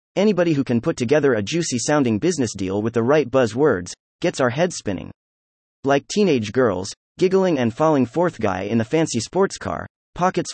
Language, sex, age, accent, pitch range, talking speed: English, male, 30-49, American, 105-160 Hz, 180 wpm